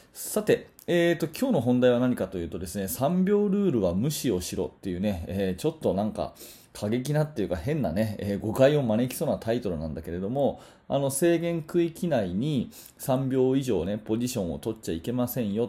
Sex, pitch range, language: male, 110-155 Hz, Japanese